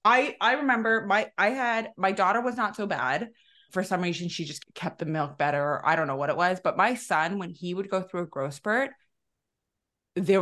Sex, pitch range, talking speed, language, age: female, 170-220 Hz, 225 wpm, English, 20-39